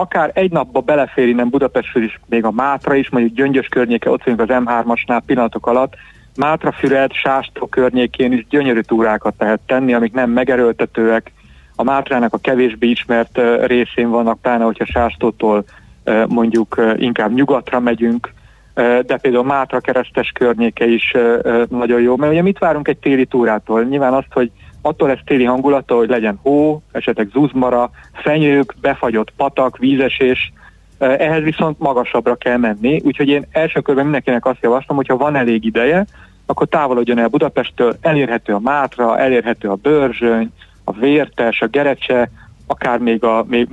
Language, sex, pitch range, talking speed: Hungarian, male, 115-135 Hz, 150 wpm